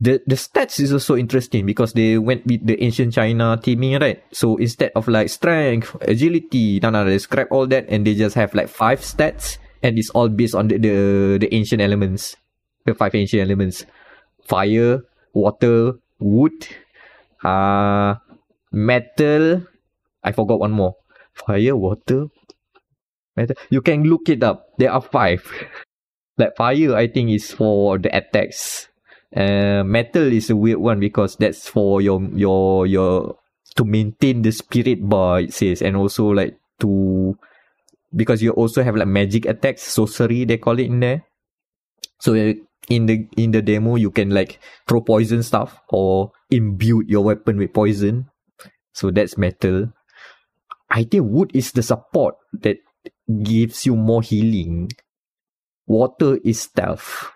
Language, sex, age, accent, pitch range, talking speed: English, male, 20-39, Malaysian, 100-120 Hz, 155 wpm